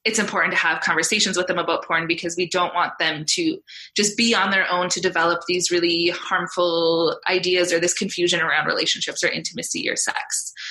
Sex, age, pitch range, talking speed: female, 20-39, 180-210 Hz, 195 wpm